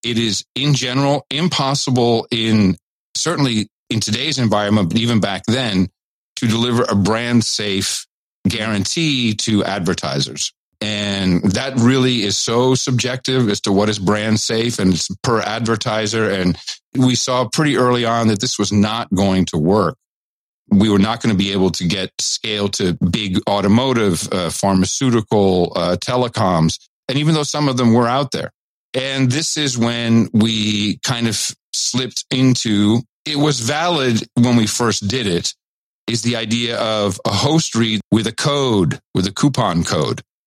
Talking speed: 155 wpm